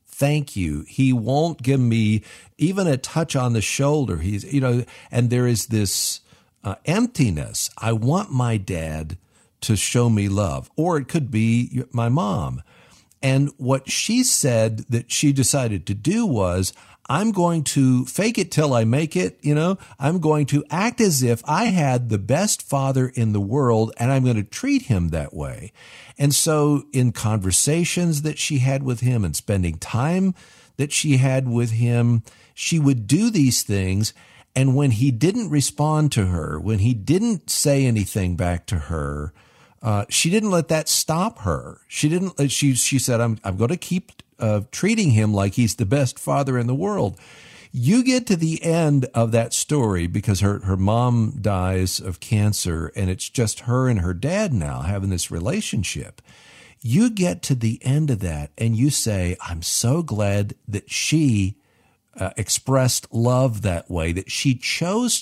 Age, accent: 50-69, American